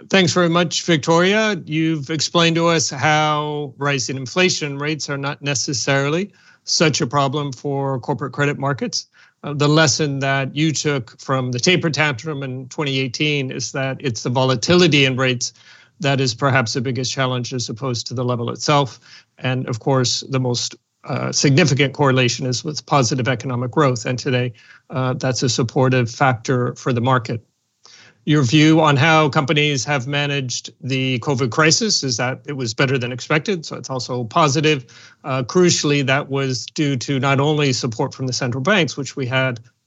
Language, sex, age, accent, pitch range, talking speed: English, male, 40-59, American, 125-150 Hz, 170 wpm